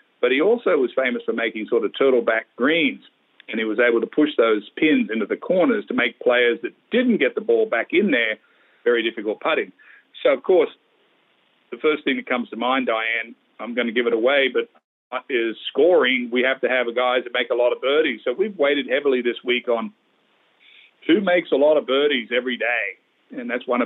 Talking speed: 215 wpm